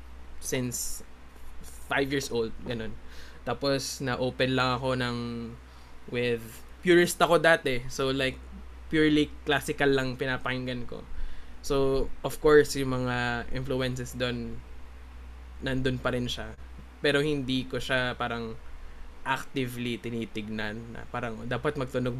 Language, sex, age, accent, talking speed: Filipino, male, 20-39, native, 115 wpm